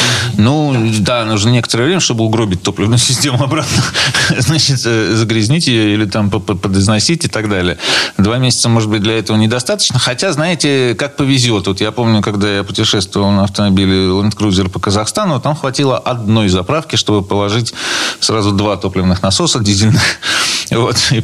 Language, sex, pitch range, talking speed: Russian, male, 105-135 Hz, 155 wpm